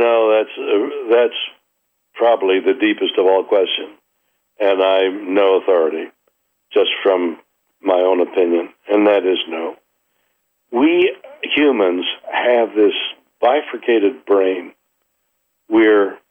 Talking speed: 110 wpm